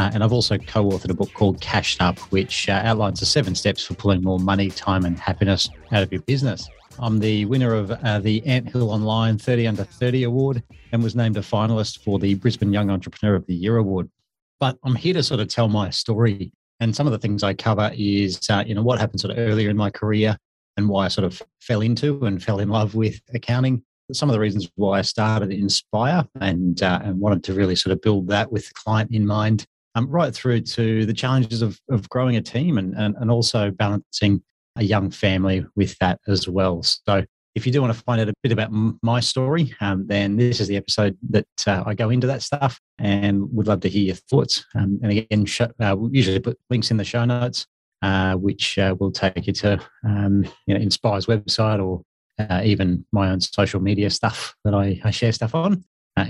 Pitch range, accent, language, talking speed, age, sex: 100-115 Hz, Australian, English, 230 wpm, 40-59, male